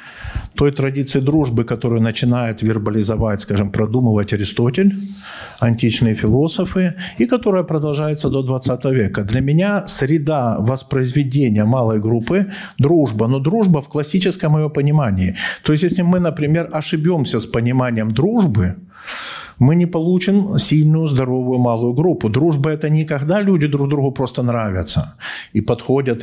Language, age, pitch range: Ukrainian, 50-69, 120-160 Hz